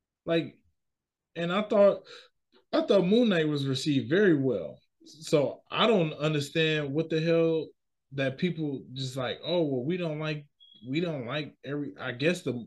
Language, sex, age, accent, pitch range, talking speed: English, male, 20-39, American, 115-160 Hz, 165 wpm